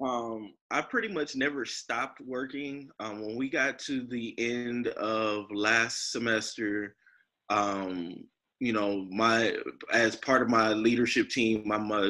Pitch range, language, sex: 110-130 Hz, English, male